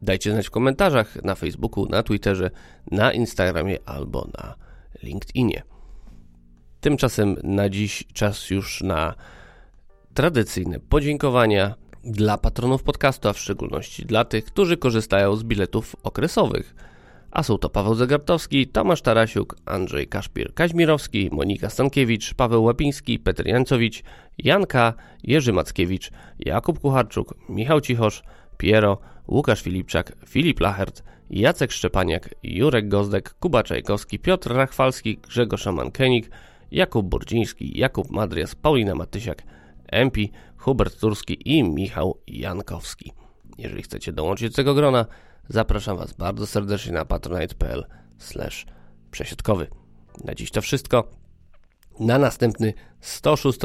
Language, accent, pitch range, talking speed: Polish, native, 95-120 Hz, 115 wpm